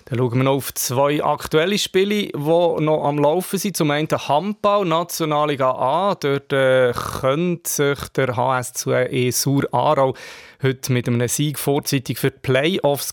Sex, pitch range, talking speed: male, 120-155 Hz, 155 wpm